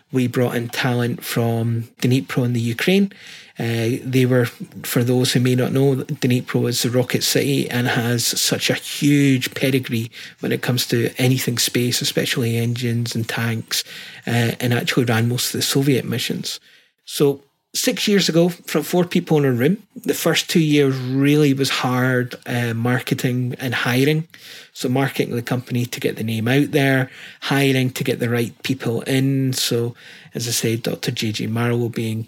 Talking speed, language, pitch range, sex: 175 wpm, English, 125-145 Hz, male